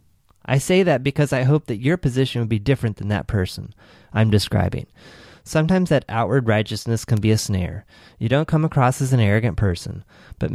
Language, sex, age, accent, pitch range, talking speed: English, male, 30-49, American, 100-125 Hz, 195 wpm